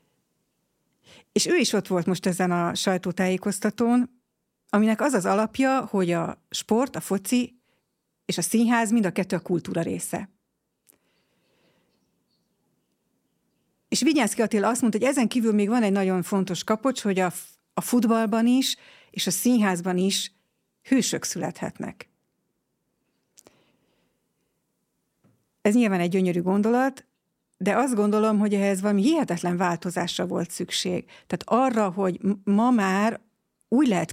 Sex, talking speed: female, 130 wpm